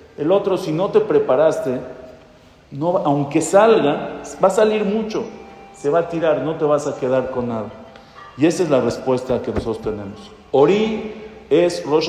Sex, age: male, 50-69